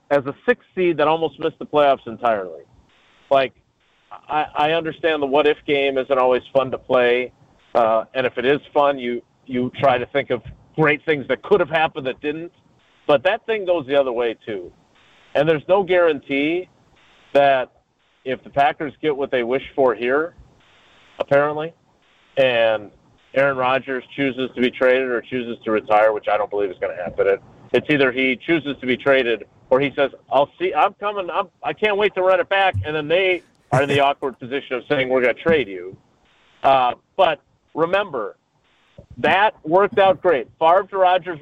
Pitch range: 130-170 Hz